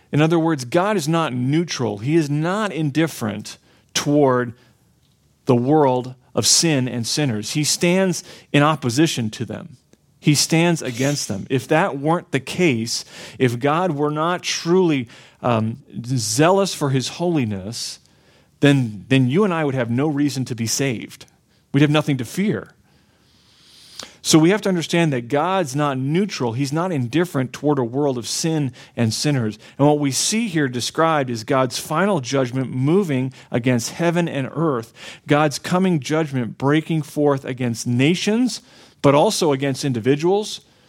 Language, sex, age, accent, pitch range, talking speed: English, male, 40-59, American, 125-165 Hz, 155 wpm